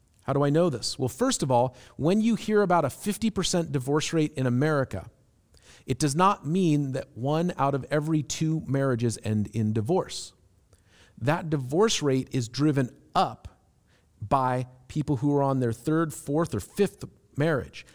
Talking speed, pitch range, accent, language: 165 wpm, 125-155 Hz, American, English